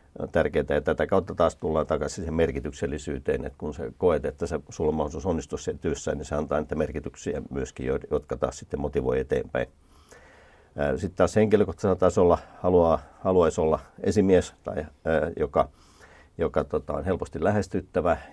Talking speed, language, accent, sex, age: 145 wpm, Finnish, native, male, 50-69